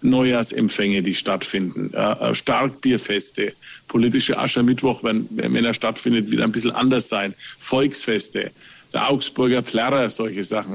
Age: 50-69